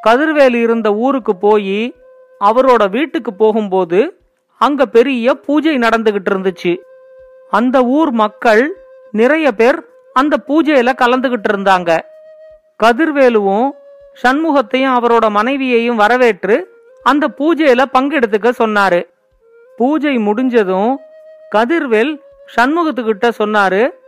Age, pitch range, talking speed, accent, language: 40-59, 220-285 Hz, 85 wpm, native, Tamil